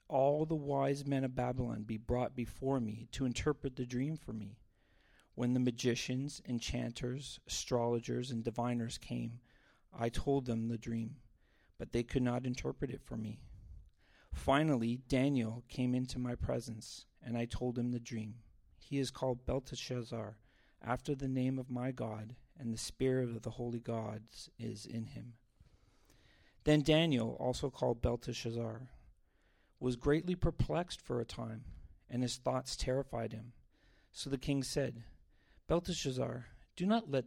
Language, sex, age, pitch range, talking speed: English, male, 40-59, 115-135 Hz, 150 wpm